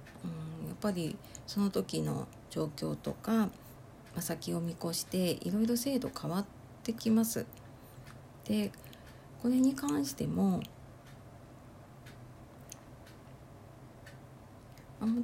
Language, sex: Japanese, female